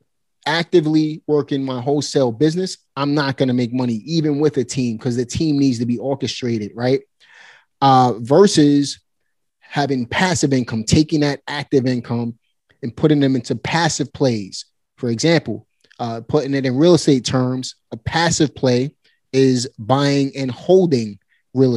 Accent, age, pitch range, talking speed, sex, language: American, 30-49, 125-150 Hz, 155 wpm, male, English